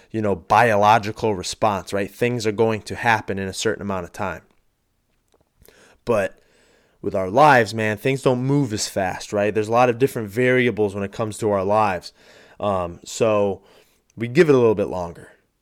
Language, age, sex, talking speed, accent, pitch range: English, 20-39, male, 185 wpm, American, 95-115 Hz